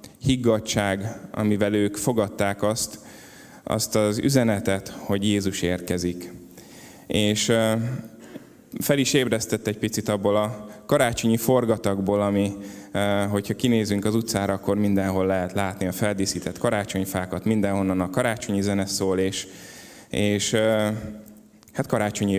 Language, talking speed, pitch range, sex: Hungarian, 115 wpm, 95-110 Hz, male